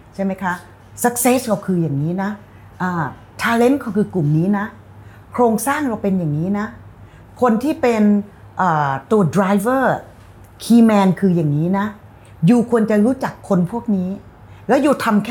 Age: 30-49